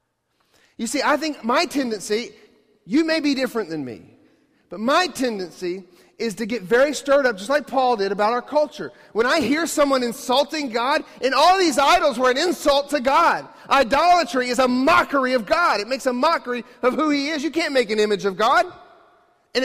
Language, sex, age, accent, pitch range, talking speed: English, male, 40-59, American, 220-310 Hz, 200 wpm